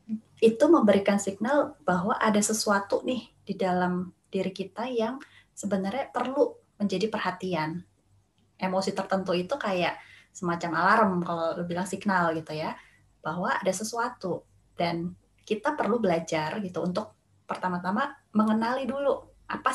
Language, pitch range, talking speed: Indonesian, 175-220 Hz, 125 wpm